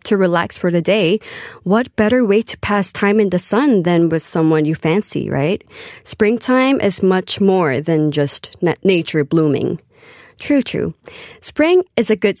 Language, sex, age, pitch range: Korean, female, 20-39, 180-265 Hz